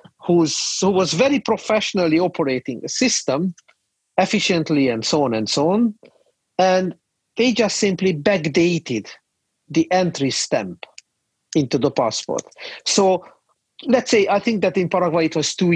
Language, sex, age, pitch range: English, male, 50-69, 155-210 Hz